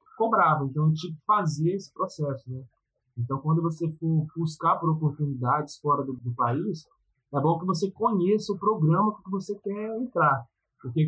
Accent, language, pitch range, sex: Brazilian, Portuguese, 135-180 Hz, male